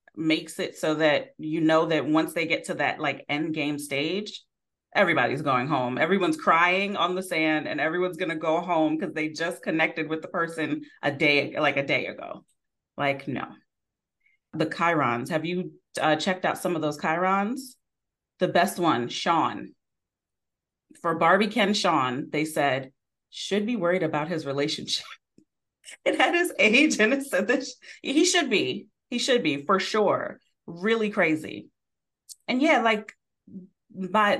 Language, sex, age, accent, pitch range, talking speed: English, female, 30-49, American, 155-190 Hz, 165 wpm